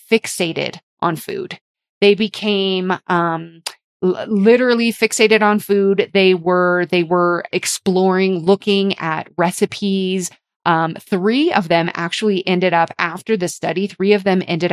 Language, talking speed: English, 135 wpm